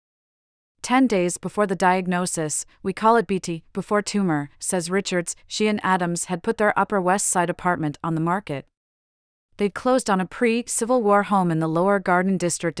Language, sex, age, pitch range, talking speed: English, female, 40-59, 160-200 Hz, 180 wpm